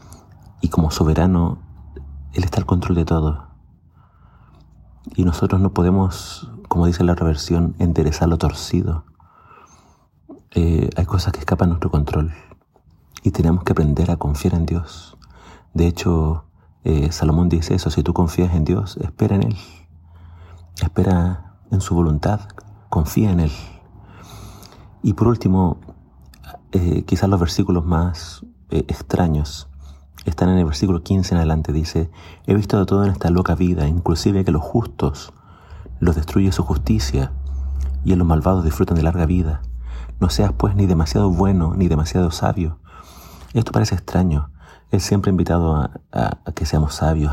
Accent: Argentinian